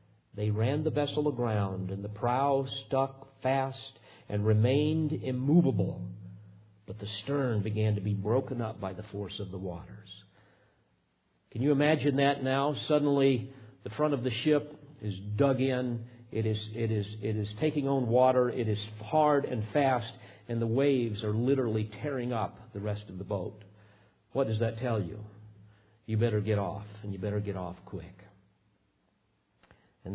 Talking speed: 165 wpm